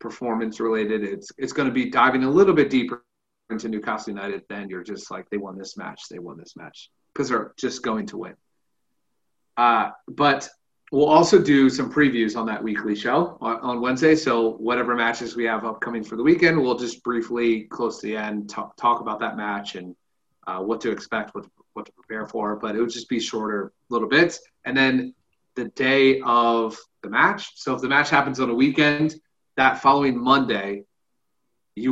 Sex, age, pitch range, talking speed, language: male, 30-49, 110-130 Hz, 195 wpm, English